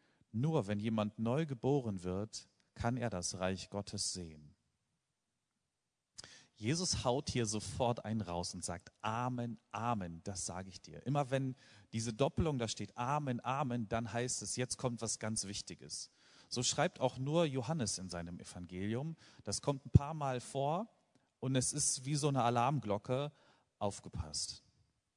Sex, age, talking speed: male, 40-59, 155 wpm